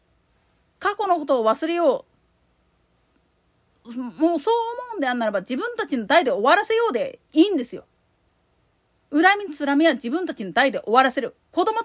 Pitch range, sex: 265-380 Hz, female